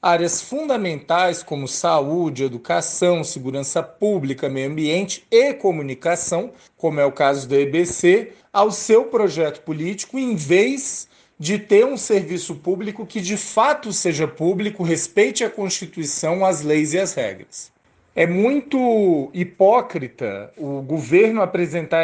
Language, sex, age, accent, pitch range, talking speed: Portuguese, male, 40-59, Brazilian, 160-210 Hz, 130 wpm